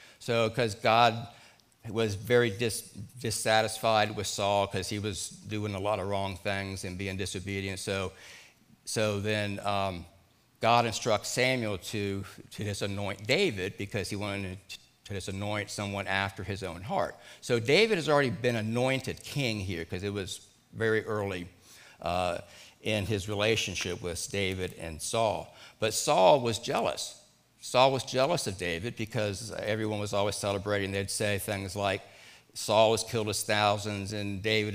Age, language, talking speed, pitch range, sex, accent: 60-79, English, 150 wpm, 100-115 Hz, male, American